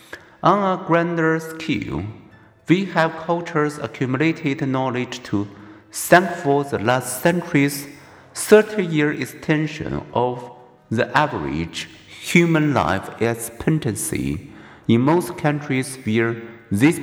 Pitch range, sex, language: 120-160 Hz, male, Chinese